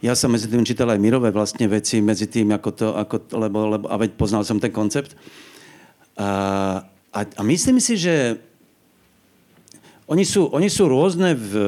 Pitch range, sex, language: 110-145 Hz, male, Slovak